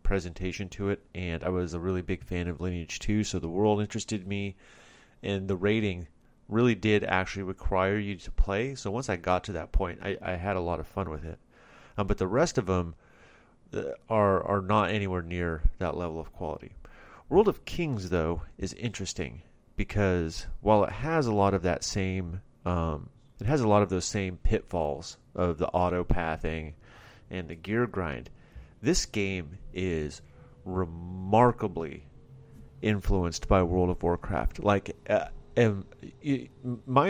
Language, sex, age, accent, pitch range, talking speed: English, male, 30-49, American, 85-105 Hz, 165 wpm